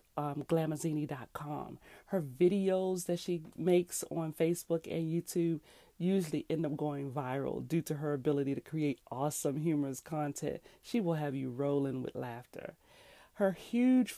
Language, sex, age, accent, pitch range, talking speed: English, female, 40-59, American, 145-170 Hz, 145 wpm